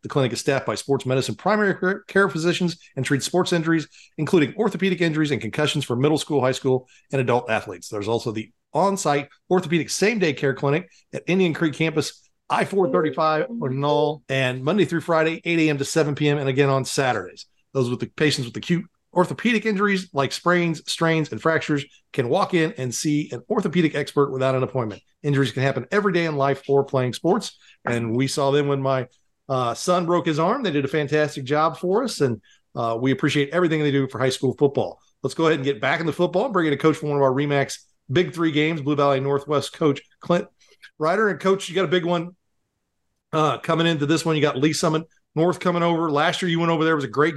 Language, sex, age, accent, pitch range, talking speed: English, male, 40-59, American, 140-175 Hz, 220 wpm